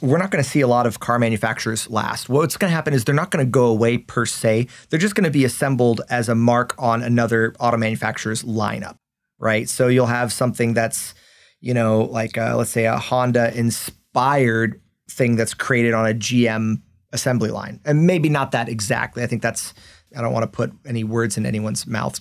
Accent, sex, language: American, male, English